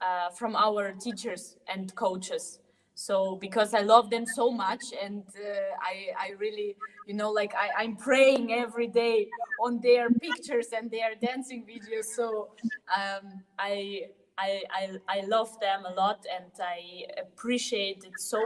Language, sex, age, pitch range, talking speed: English, female, 20-39, 190-225 Hz, 155 wpm